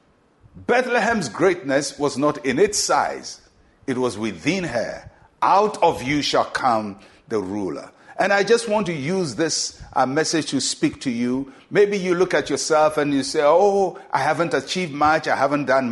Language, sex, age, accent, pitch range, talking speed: English, male, 60-79, Nigerian, 135-170 Hz, 175 wpm